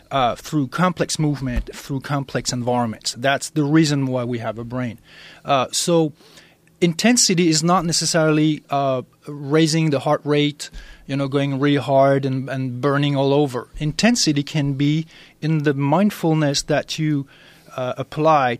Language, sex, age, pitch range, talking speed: English, male, 30-49, 135-160 Hz, 150 wpm